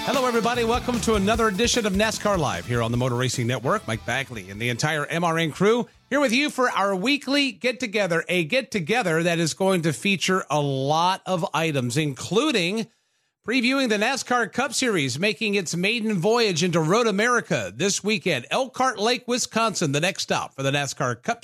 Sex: male